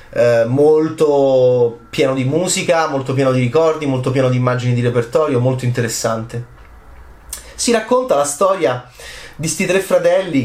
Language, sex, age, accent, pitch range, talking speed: Italian, male, 30-49, native, 130-160 Hz, 140 wpm